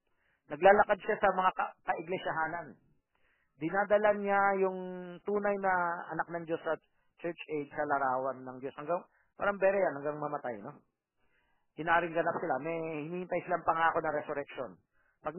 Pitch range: 145-190 Hz